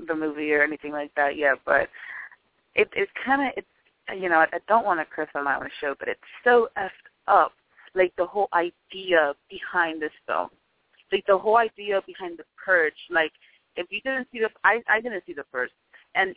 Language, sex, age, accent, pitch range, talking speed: English, female, 30-49, American, 160-210 Hz, 210 wpm